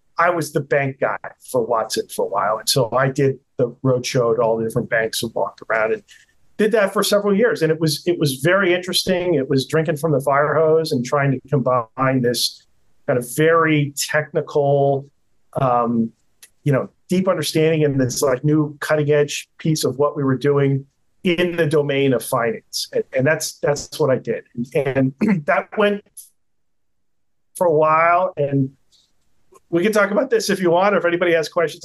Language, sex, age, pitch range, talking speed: English, male, 40-59, 130-160 Hz, 195 wpm